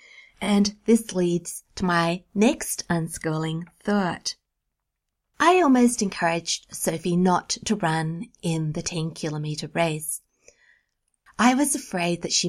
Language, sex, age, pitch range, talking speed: English, female, 30-49, 170-215 Hz, 115 wpm